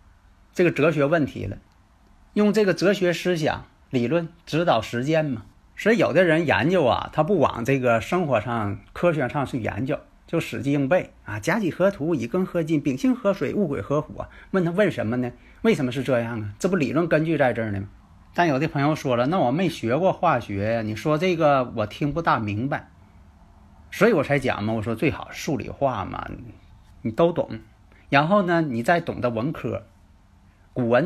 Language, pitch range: Chinese, 100-150 Hz